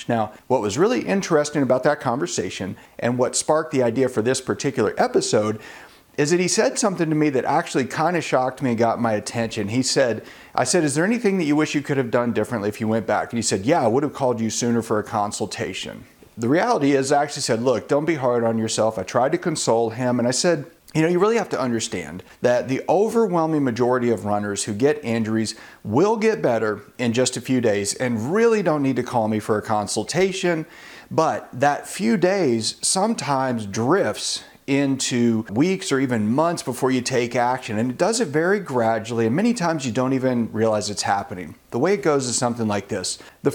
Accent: American